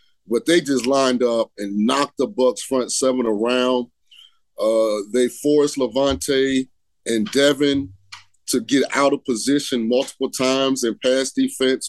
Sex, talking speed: male, 140 wpm